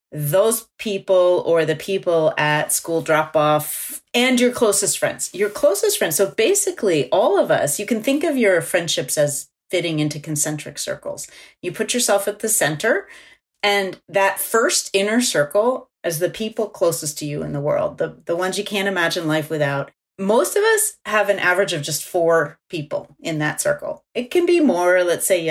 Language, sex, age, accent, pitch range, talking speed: English, female, 30-49, American, 160-210 Hz, 190 wpm